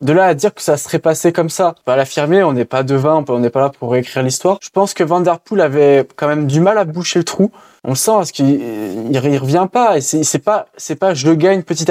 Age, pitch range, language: 20-39, 150-195 Hz, French